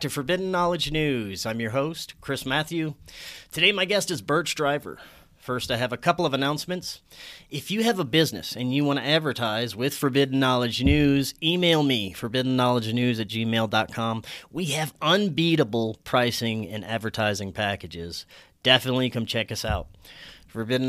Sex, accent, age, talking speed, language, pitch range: male, American, 30-49, 155 wpm, English, 110-145 Hz